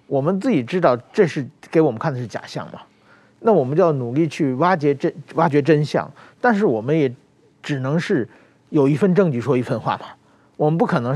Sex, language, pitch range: male, Chinese, 130-170 Hz